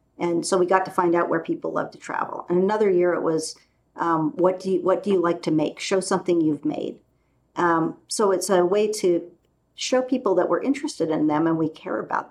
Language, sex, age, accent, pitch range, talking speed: English, female, 50-69, American, 170-225 Hz, 230 wpm